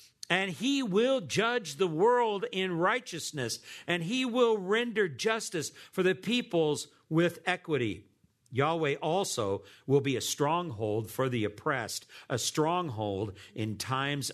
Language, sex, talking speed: English, male, 130 wpm